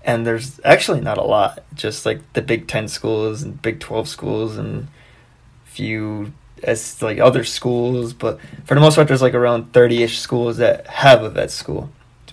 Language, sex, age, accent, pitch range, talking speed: English, male, 20-39, American, 120-145 Hz, 190 wpm